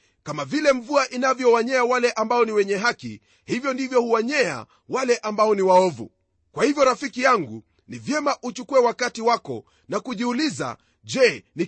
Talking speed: 150 wpm